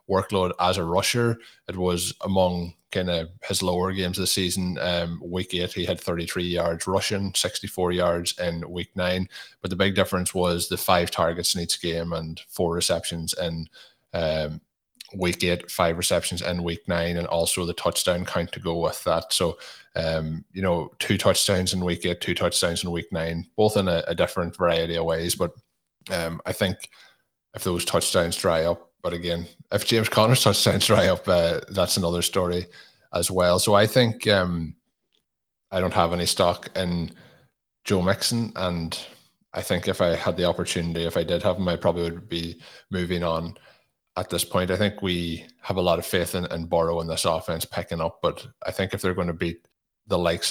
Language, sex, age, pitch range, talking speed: English, male, 20-39, 85-95 Hz, 195 wpm